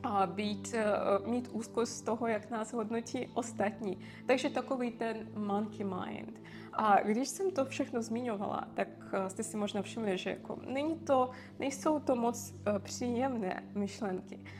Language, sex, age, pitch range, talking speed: Czech, female, 20-39, 190-240 Hz, 125 wpm